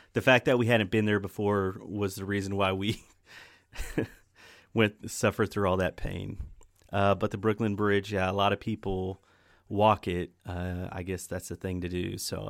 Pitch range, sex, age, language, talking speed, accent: 95-115 Hz, male, 30-49, English, 190 wpm, American